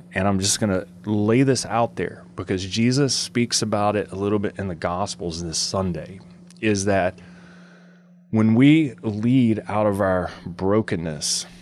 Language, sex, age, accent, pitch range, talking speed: English, male, 30-49, American, 95-145 Hz, 160 wpm